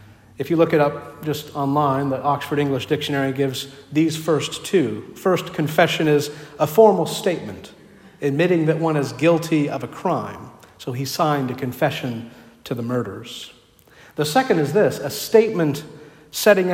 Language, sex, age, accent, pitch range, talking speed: English, male, 50-69, American, 135-160 Hz, 160 wpm